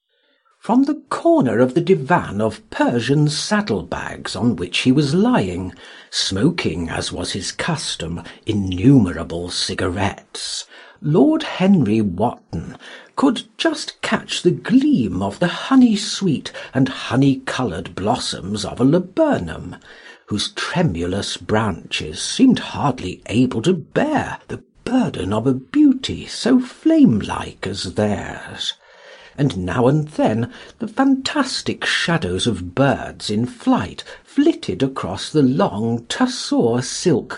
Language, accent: Korean, British